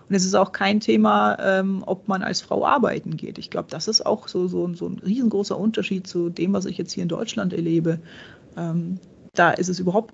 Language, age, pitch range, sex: German, 30-49, 175-220 Hz, female